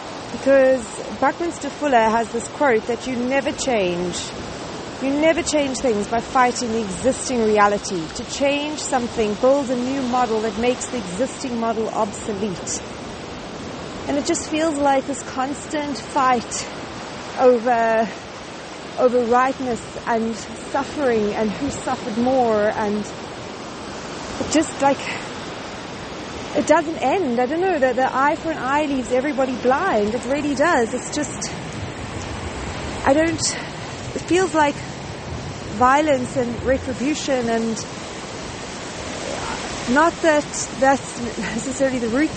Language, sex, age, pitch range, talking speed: English, female, 40-59, 230-280 Hz, 125 wpm